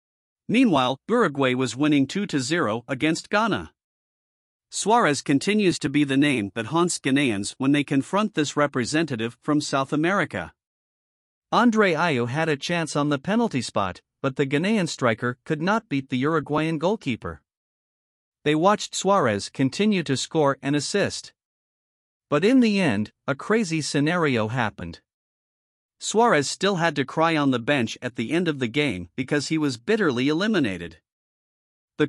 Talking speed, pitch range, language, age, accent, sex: 150 wpm, 130-175 Hz, English, 50-69, American, male